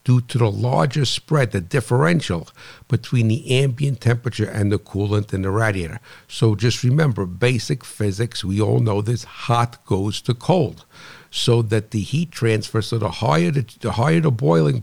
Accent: American